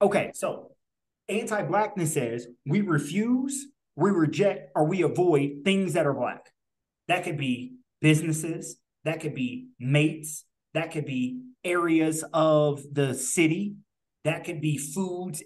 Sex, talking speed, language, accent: male, 130 wpm, English, American